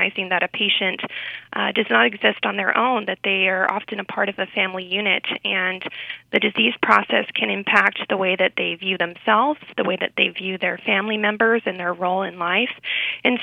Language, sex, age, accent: English, female, 20-39, American